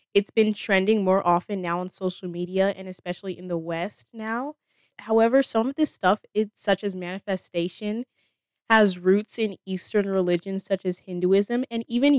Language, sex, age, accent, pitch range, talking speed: English, female, 20-39, American, 180-215 Hz, 165 wpm